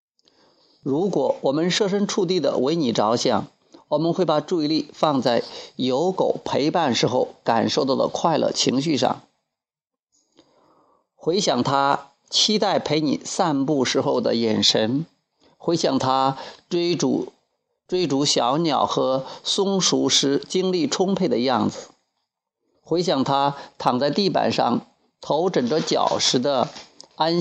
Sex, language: male, Chinese